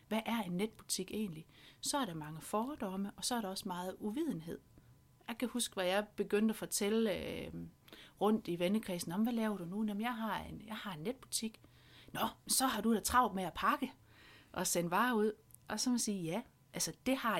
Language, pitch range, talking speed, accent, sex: Danish, 170-225 Hz, 220 wpm, native, female